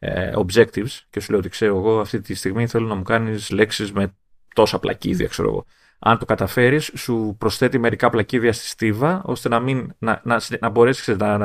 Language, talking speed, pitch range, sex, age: Greek, 150 wpm, 105-135 Hz, male, 30-49